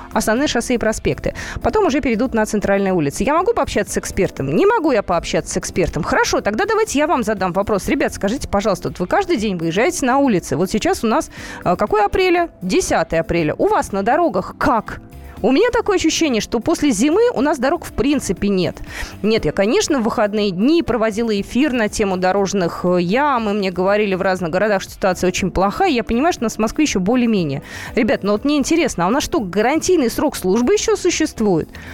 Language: Russian